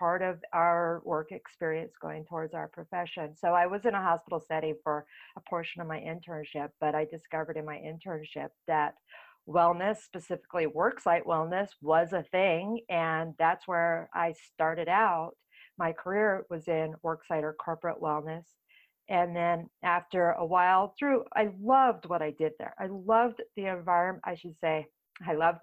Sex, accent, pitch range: female, American, 165-190 Hz